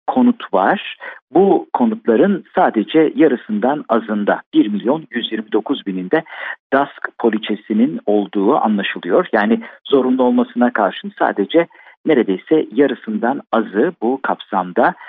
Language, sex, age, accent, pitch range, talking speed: Turkish, male, 50-69, native, 110-185 Hz, 100 wpm